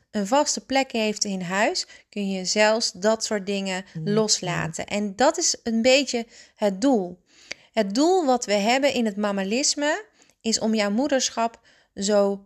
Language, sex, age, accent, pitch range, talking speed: Dutch, female, 30-49, Dutch, 205-250 Hz, 160 wpm